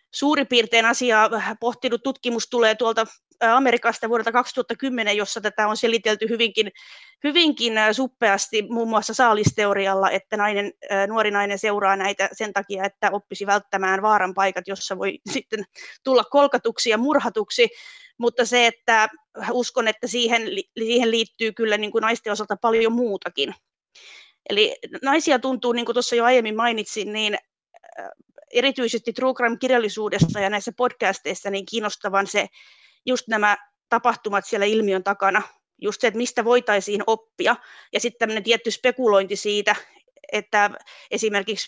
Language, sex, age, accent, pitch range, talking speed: Finnish, female, 20-39, native, 205-245 Hz, 135 wpm